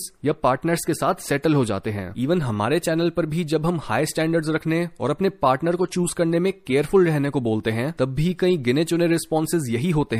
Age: 30-49